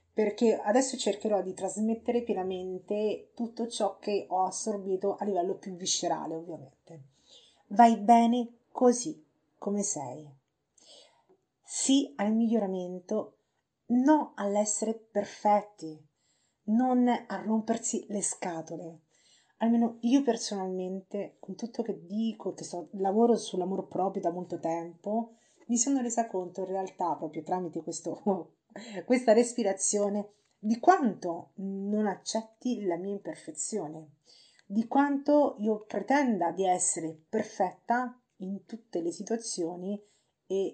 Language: Italian